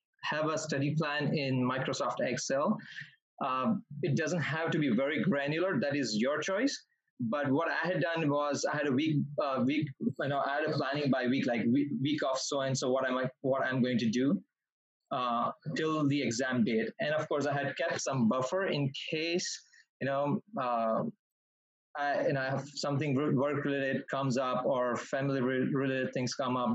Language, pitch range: English, 130-165 Hz